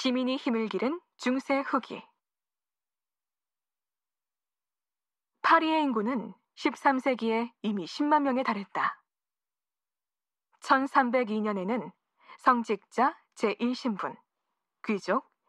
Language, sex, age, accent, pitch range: Korean, female, 20-39, native, 215-275 Hz